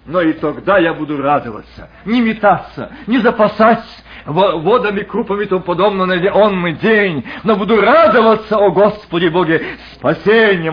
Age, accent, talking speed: 50-69, native, 135 wpm